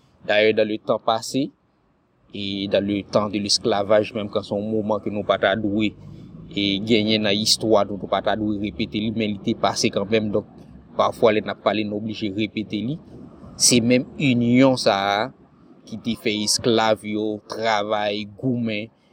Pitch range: 105-115 Hz